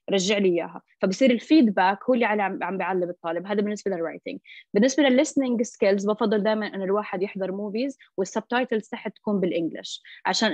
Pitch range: 185-235 Hz